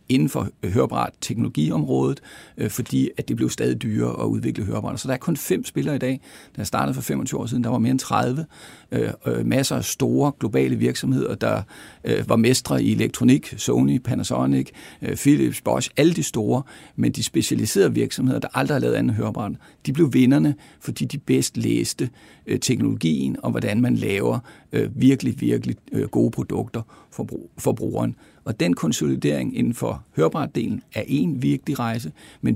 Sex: male